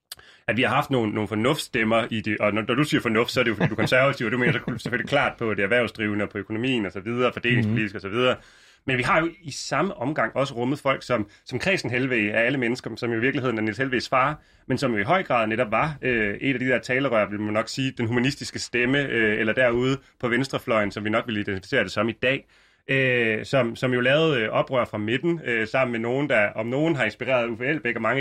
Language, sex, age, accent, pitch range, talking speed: Danish, male, 30-49, native, 110-140 Hz, 255 wpm